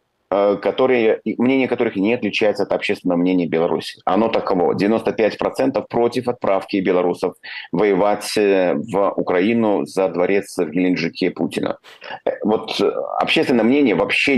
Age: 30-49